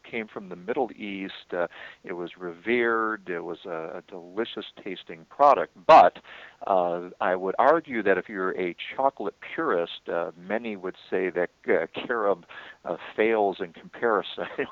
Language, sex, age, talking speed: English, male, 50-69, 155 wpm